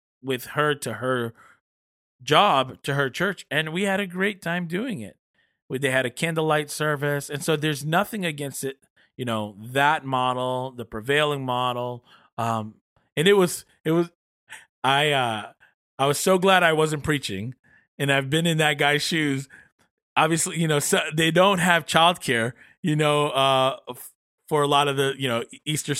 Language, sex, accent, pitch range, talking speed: English, male, American, 130-170 Hz, 175 wpm